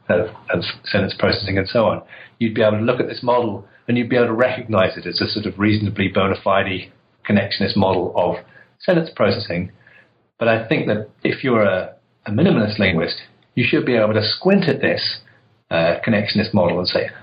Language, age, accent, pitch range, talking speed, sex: English, 40-59, British, 100-115 Hz, 195 wpm, male